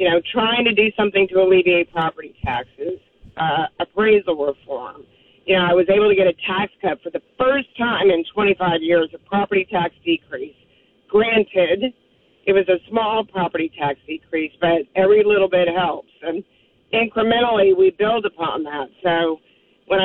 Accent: American